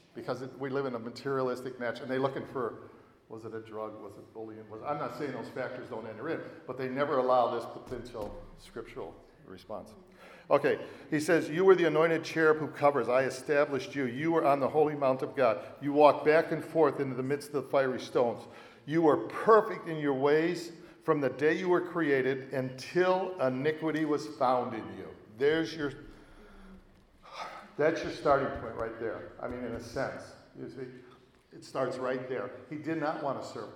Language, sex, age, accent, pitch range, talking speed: English, male, 50-69, American, 125-150 Hz, 195 wpm